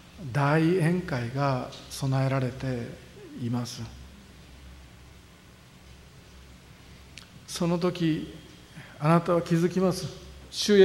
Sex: male